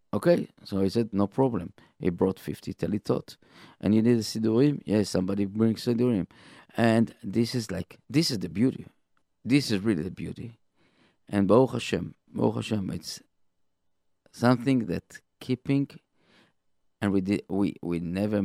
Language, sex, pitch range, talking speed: English, male, 95-120 Hz, 155 wpm